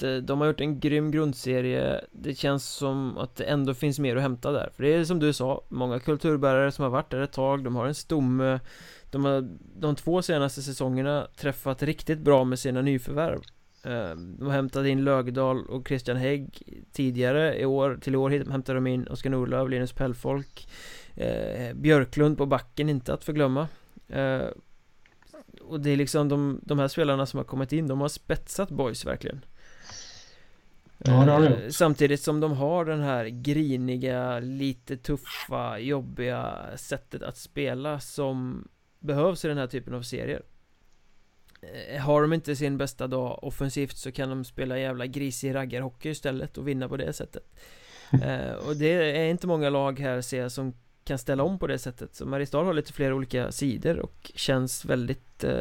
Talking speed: 165 wpm